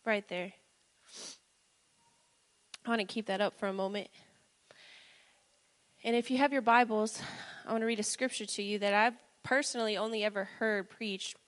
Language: English